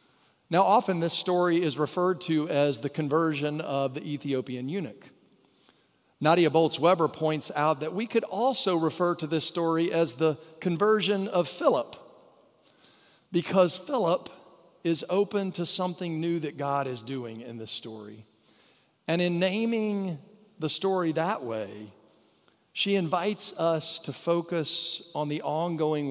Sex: male